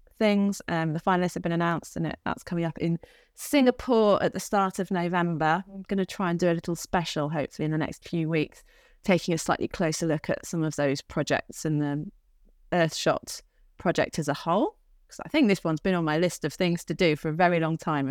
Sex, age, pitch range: female, 30-49, 165-205 Hz